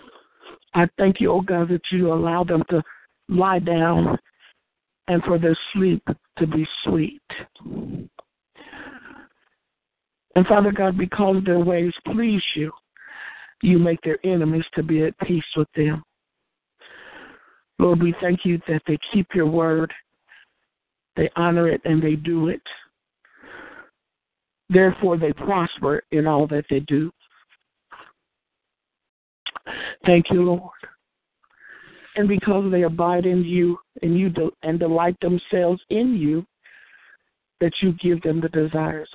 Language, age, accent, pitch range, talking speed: English, 60-79, American, 160-185 Hz, 130 wpm